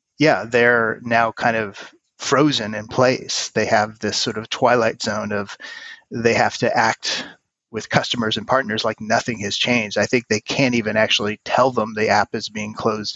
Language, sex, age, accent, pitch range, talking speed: English, male, 30-49, American, 110-125 Hz, 185 wpm